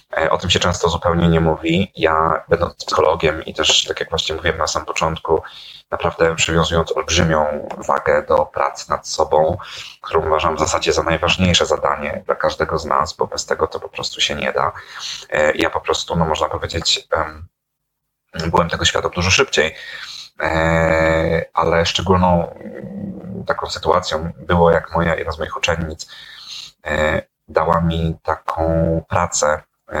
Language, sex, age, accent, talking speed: Polish, male, 30-49, native, 145 wpm